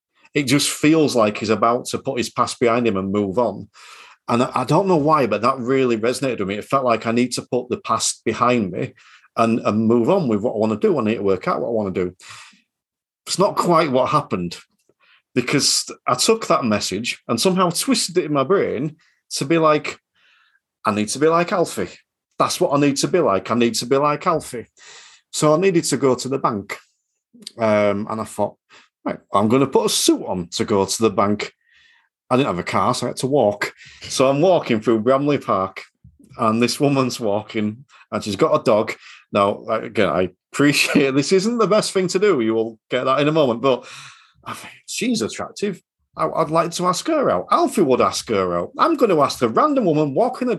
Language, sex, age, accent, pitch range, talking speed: English, male, 40-59, British, 110-170 Hz, 220 wpm